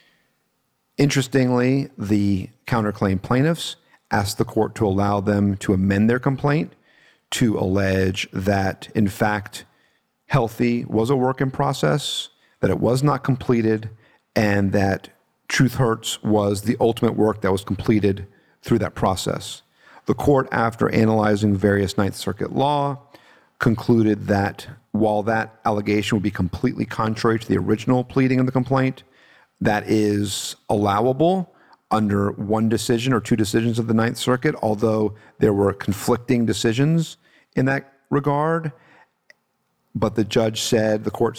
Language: English